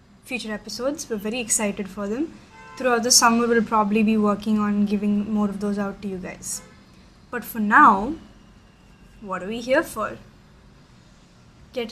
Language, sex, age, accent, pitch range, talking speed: English, female, 10-29, Indian, 215-245 Hz, 155 wpm